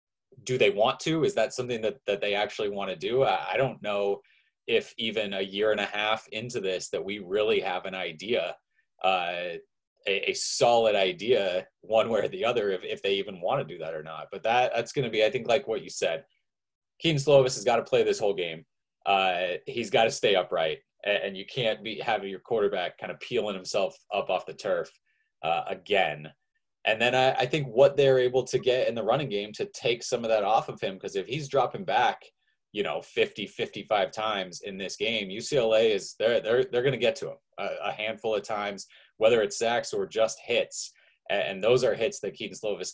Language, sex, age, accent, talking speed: English, male, 20-39, American, 220 wpm